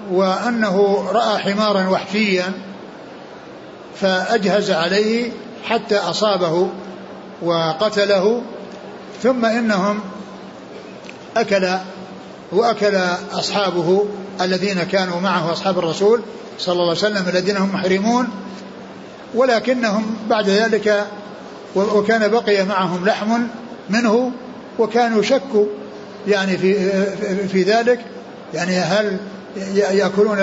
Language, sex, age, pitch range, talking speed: Arabic, male, 60-79, 190-215 Hz, 85 wpm